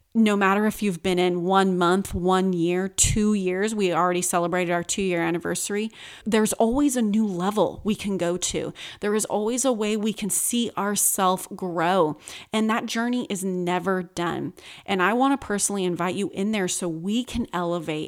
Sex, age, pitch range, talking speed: female, 30-49, 175-205 Hz, 185 wpm